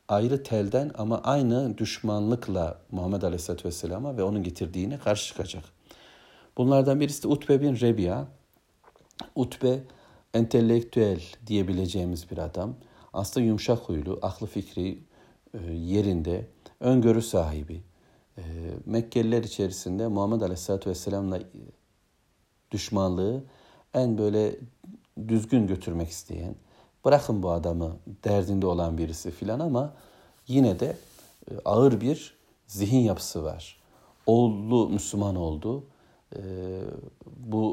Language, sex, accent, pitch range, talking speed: Turkish, male, native, 90-120 Hz, 95 wpm